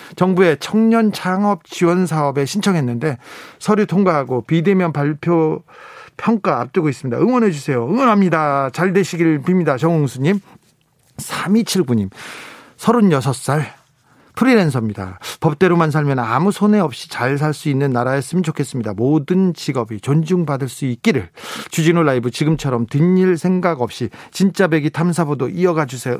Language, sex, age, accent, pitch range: Korean, male, 40-59, native, 135-185 Hz